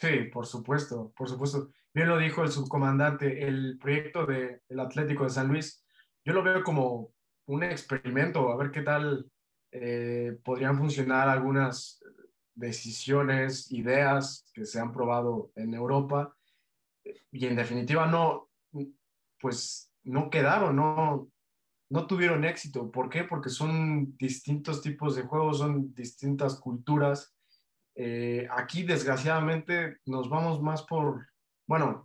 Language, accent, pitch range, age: Spanish, Mexican, 125-150 Hz, 20-39